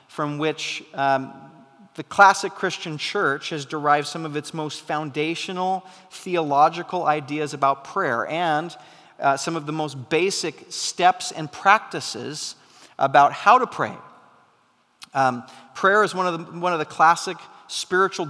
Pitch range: 150-195 Hz